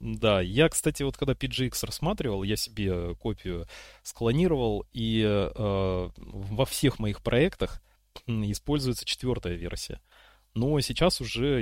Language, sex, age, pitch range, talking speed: Russian, male, 30-49, 100-130 Hz, 120 wpm